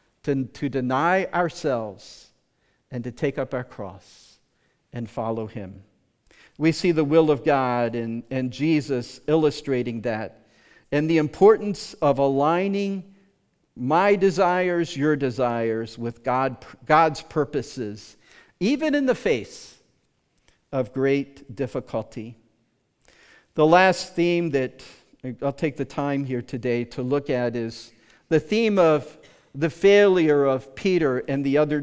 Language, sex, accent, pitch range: English, male, American, 130-180 Hz